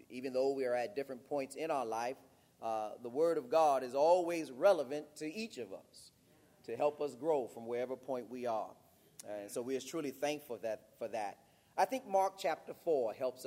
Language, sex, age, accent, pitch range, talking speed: English, male, 30-49, American, 120-145 Hz, 205 wpm